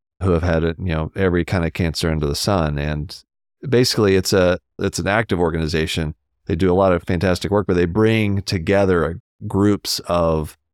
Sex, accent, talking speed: male, American, 185 wpm